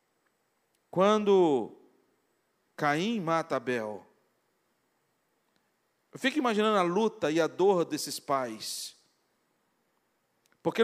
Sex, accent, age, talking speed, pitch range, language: male, Brazilian, 40-59, 85 wpm, 175-255 Hz, Portuguese